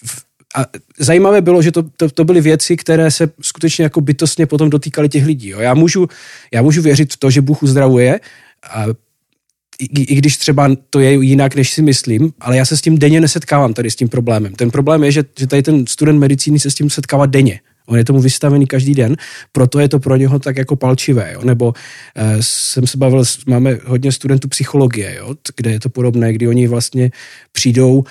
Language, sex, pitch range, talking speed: Slovak, male, 120-145 Hz, 210 wpm